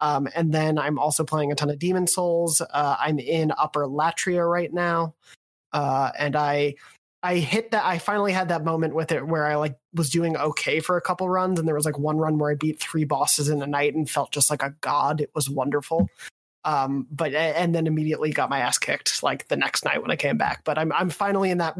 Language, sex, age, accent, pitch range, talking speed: English, male, 20-39, American, 150-170 Hz, 240 wpm